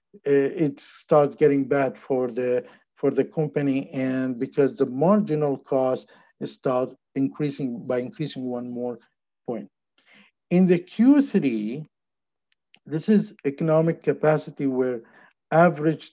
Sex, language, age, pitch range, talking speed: male, English, 50-69, 130-155 Hz, 110 wpm